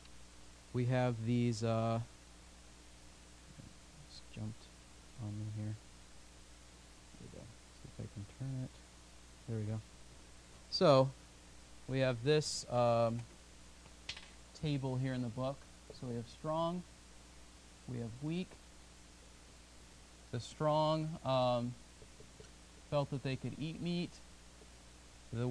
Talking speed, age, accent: 110 wpm, 30-49, American